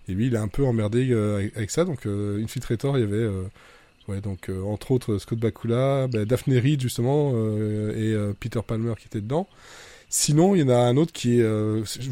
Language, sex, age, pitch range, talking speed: French, male, 20-39, 105-130 Hz, 240 wpm